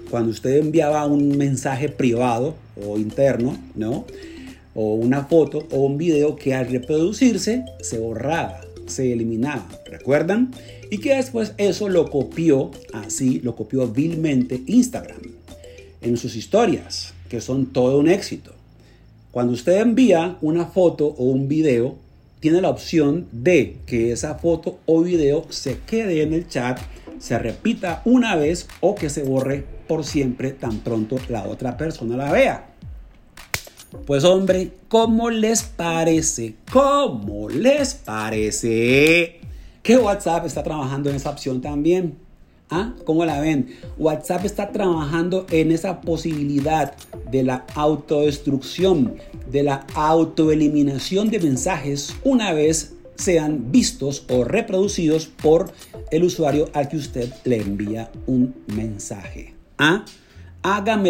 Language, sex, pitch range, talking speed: Spanish, male, 120-175 Hz, 130 wpm